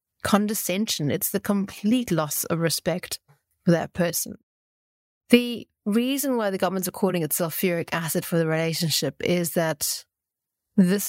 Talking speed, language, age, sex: 130 wpm, English, 30-49, female